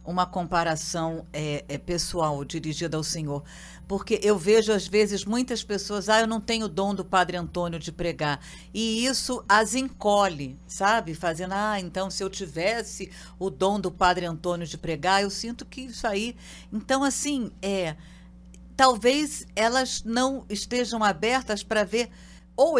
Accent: Brazilian